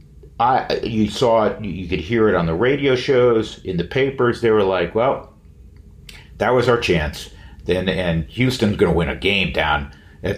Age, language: 50-69, English